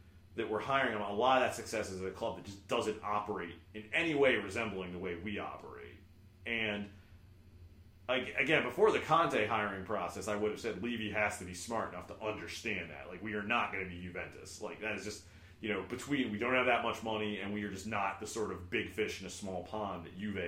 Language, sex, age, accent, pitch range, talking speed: English, male, 30-49, American, 95-120 Hz, 235 wpm